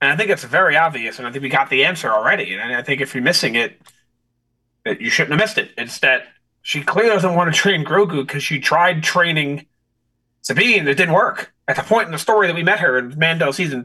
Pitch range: 120-165 Hz